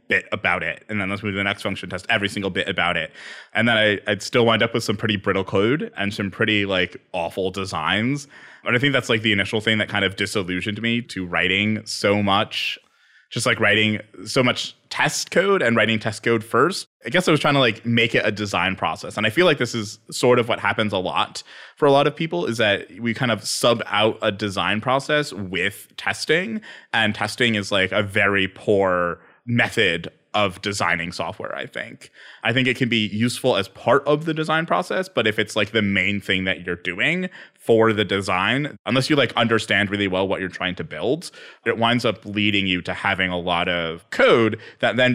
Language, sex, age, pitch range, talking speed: English, male, 20-39, 100-120 Hz, 220 wpm